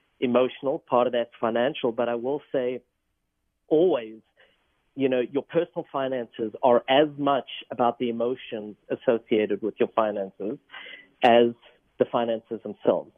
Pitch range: 115-140 Hz